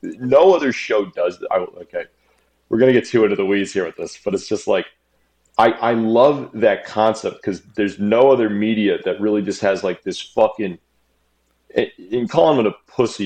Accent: American